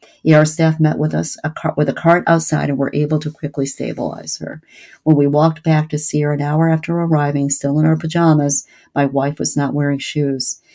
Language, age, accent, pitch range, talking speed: English, 50-69, American, 140-160 Hz, 220 wpm